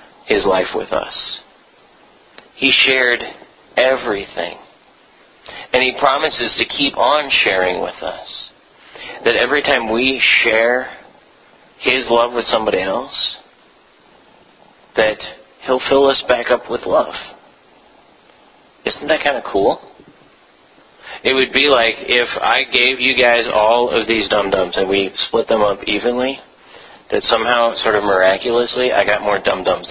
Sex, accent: male, American